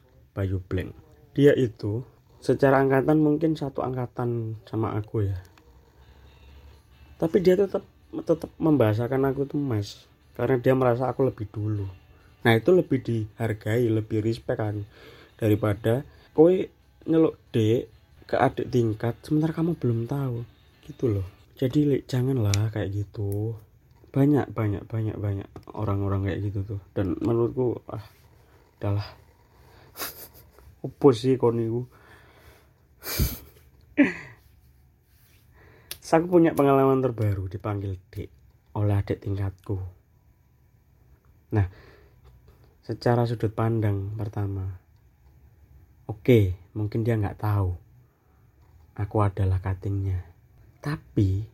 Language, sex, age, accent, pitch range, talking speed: Indonesian, male, 30-49, native, 100-130 Hz, 105 wpm